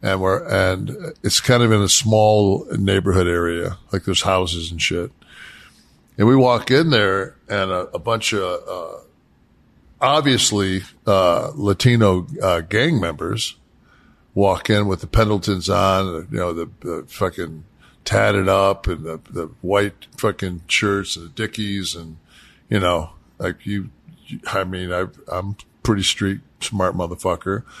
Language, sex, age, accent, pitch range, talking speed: English, male, 50-69, American, 95-110 Hz, 150 wpm